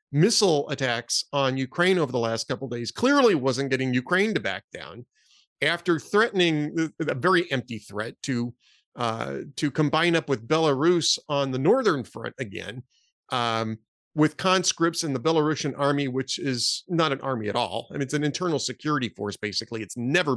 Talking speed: 175 wpm